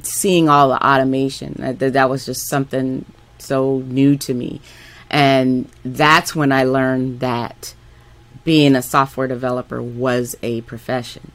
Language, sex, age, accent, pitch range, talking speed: English, female, 30-49, American, 125-145 Hz, 135 wpm